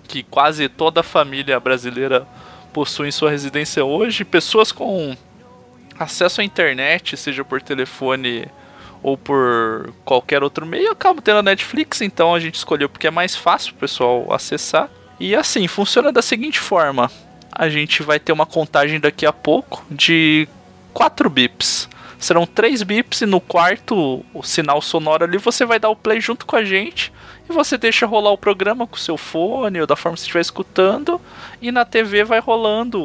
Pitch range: 150-220 Hz